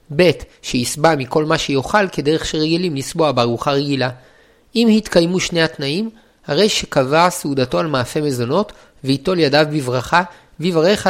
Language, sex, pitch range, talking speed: Hebrew, male, 140-175 Hz, 130 wpm